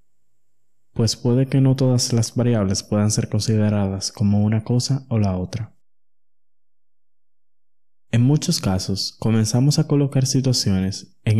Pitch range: 100-120 Hz